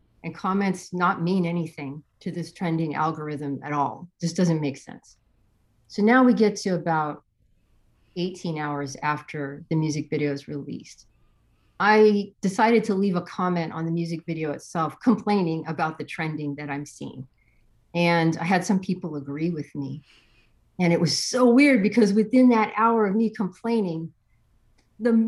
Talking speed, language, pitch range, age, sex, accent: 160 wpm, English, 150-225 Hz, 40-59, female, American